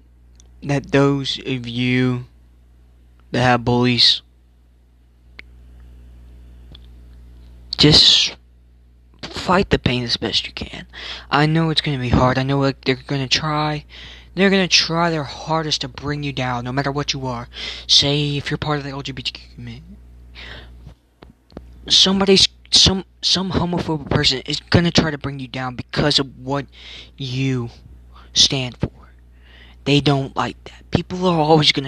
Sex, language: male, English